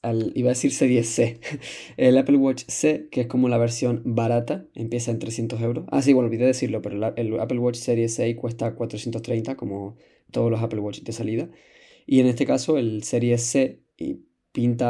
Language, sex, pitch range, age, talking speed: Spanish, male, 110-130 Hz, 20-39, 195 wpm